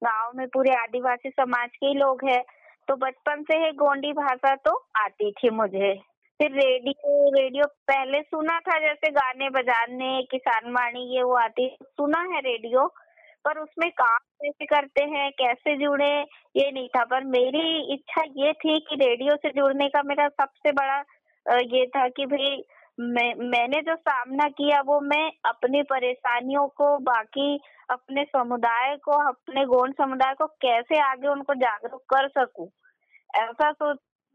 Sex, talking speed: female, 155 wpm